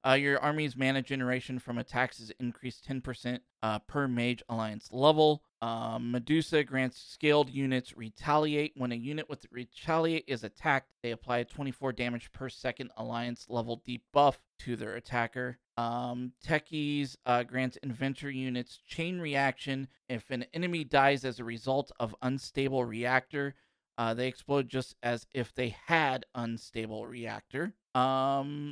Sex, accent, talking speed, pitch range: male, American, 145 wpm, 120-145 Hz